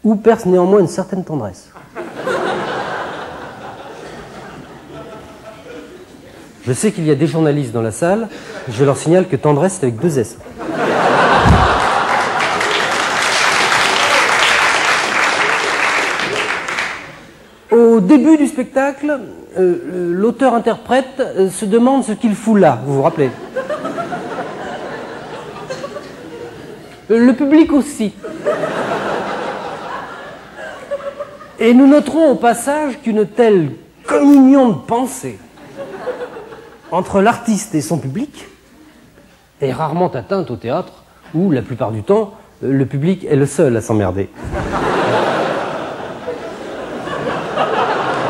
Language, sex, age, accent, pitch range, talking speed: French, male, 40-59, French, 165-265 Hz, 95 wpm